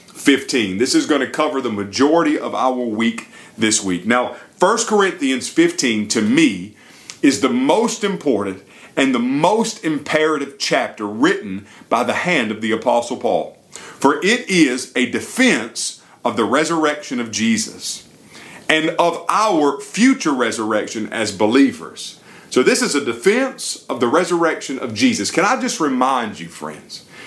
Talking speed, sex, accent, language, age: 150 wpm, male, American, English, 40-59